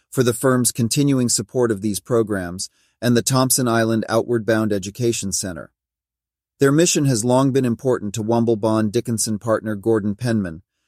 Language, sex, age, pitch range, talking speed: English, male, 40-59, 110-125 Hz, 155 wpm